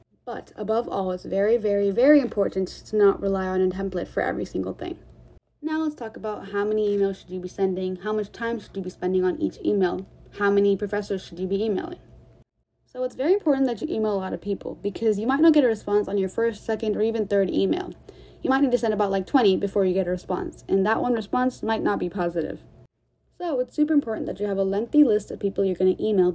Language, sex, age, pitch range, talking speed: English, female, 20-39, 190-235 Hz, 250 wpm